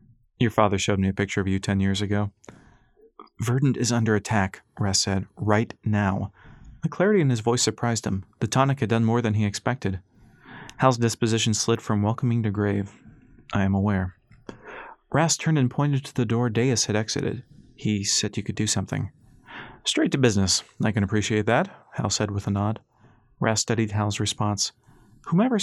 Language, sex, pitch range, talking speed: English, male, 105-125 Hz, 180 wpm